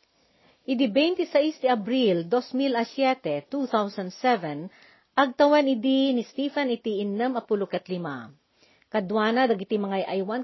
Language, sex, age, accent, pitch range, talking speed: Filipino, female, 40-59, native, 195-255 Hz, 90 wpm